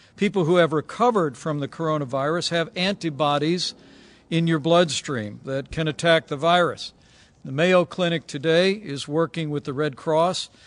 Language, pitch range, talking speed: English, 140-170 Hz, 150 wpm